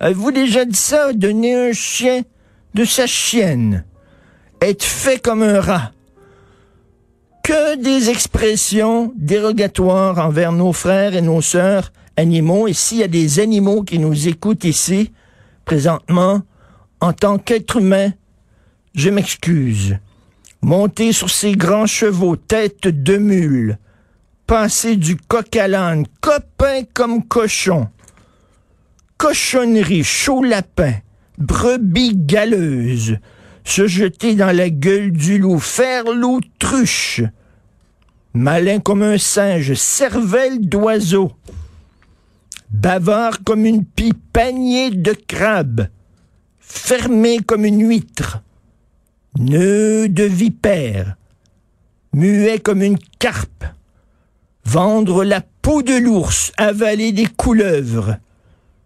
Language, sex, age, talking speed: French, male, 50-69, 105 wpm